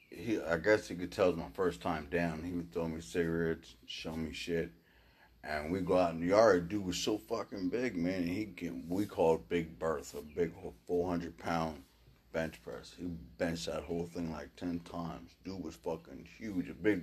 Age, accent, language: 30-49, American, English